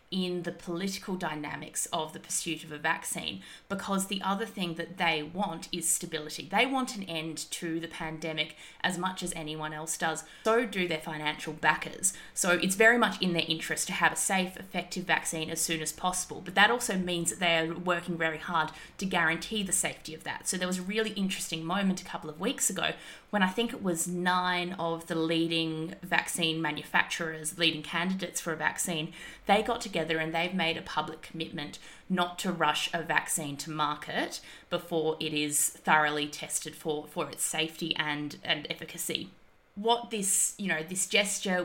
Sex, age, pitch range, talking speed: female, 20-39, 160-185 Hz, 190 wpm